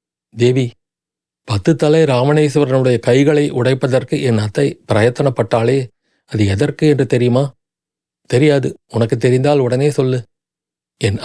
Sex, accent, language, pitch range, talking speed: male, native, Tamil, 120-145 Hz, 100 wpm